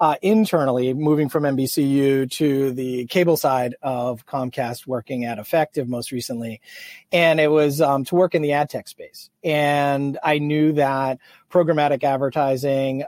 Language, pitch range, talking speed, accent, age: English, 130-150 Hz, 150 wpm, American, 30-49